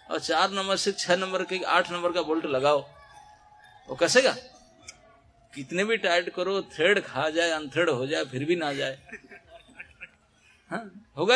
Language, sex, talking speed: Hindi, male, 160 wpm